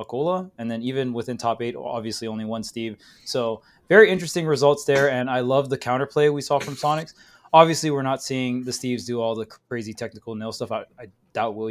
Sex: male